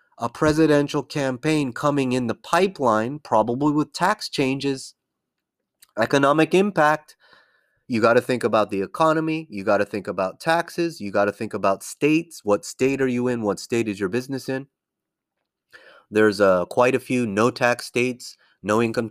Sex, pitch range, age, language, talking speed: male, 110-150 Hz, 30-49, English, 165 wpm